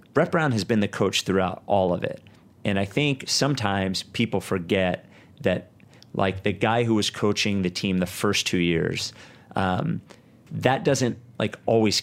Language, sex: English, male